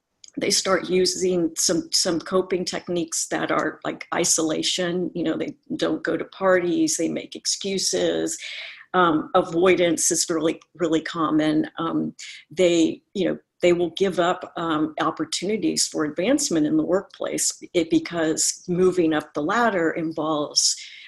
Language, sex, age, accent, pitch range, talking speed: English, female, 50-69, American, 160-185 Hz, 135 wpm